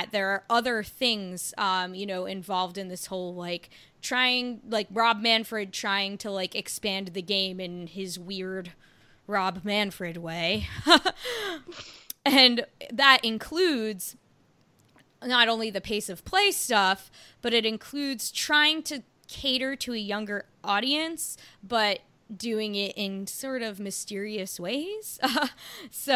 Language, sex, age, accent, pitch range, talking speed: English, female, 20-39, American, 190-230 Hz, 130 wpm